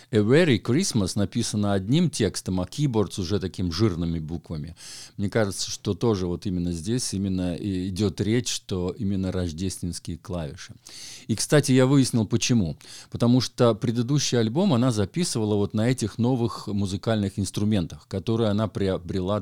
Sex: male